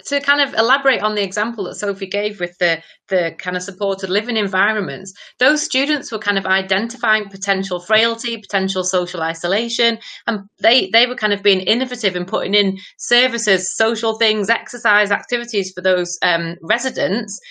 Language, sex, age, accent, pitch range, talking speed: English, female, 30-49, British, 180-215 Hz, 170 wpm